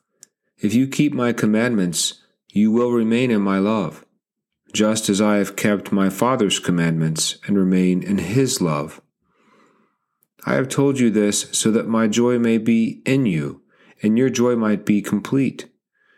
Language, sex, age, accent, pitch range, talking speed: English, male, 40-59, American, 95-115 Hz, 160 wpm